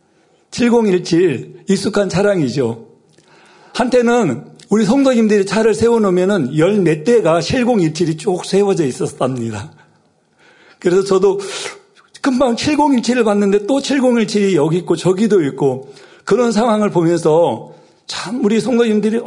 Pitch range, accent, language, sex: 160-220 Hz, native, Korean, male